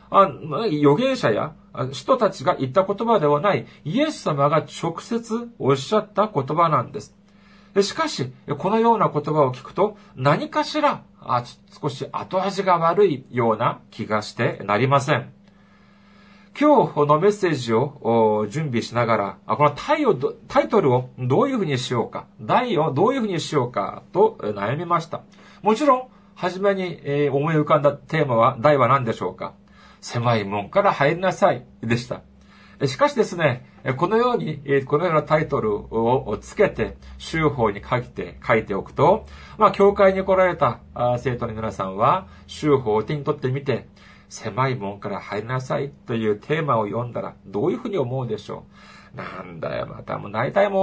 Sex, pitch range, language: male, 125-200 Hz, Japanese